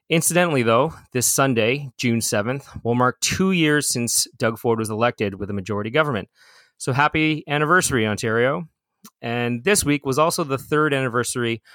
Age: 30-49